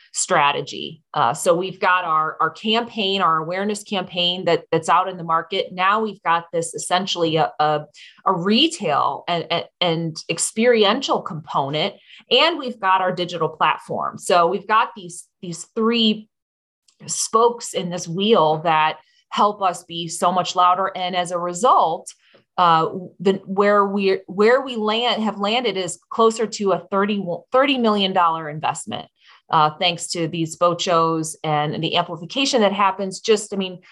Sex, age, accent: female, 30-49, American